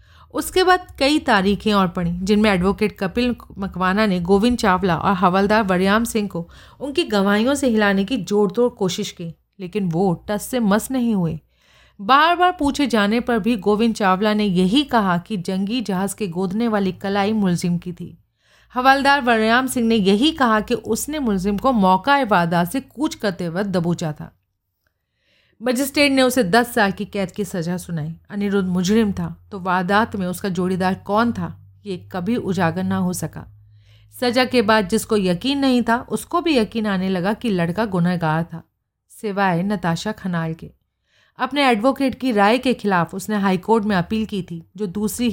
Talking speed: 175 wpm